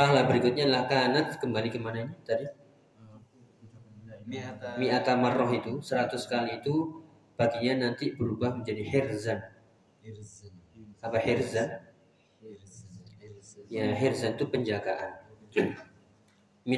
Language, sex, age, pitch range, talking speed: Indonesian, male, 30-49, 110-130 Hz, 75 wpm